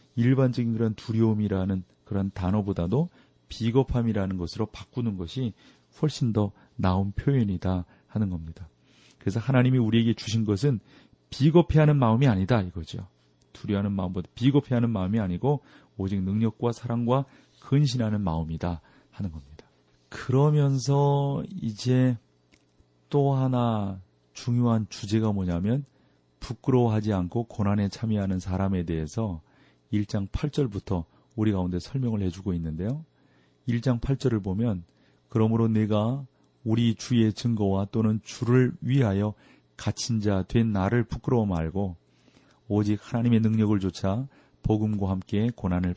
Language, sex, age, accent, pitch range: Korean, male, 40-59, native, 95-120 Hz